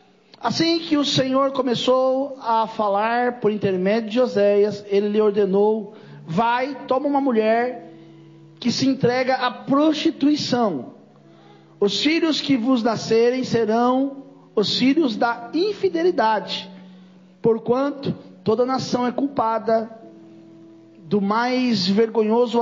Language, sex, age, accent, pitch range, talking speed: Portuguese, male, 40-59, Brazilian, 200-255 Hz, 110 wpm